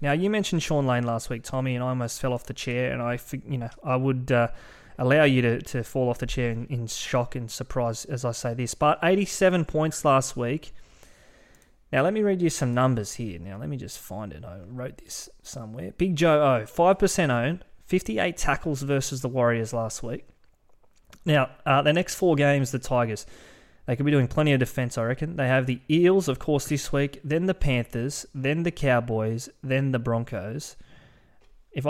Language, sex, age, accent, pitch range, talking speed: English, male, 20-39, Australian, 120-150 Hz, 205 wpm